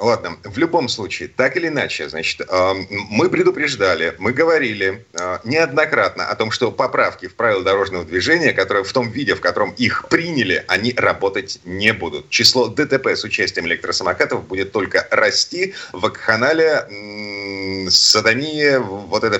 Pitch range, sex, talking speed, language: 100-145 Hz, male, 140 wpm, Russian